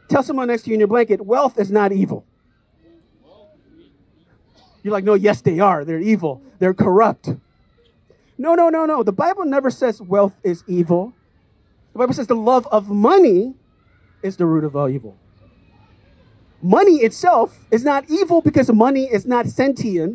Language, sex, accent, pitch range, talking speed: English, male, American, 180-265 Hz, 165 wpm